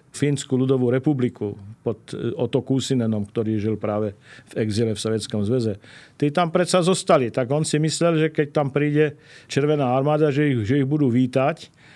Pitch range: 120-145 Hz